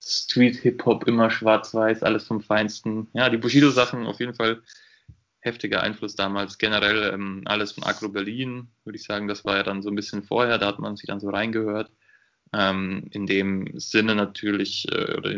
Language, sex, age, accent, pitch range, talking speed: German, male, 20-39, German, 100-115 Hz, 180 wpm